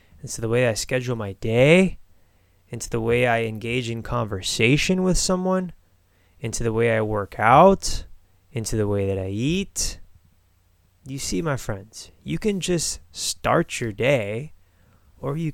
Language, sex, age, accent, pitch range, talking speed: English, male, 20-39, American, 95-125 Hz, 155 wpm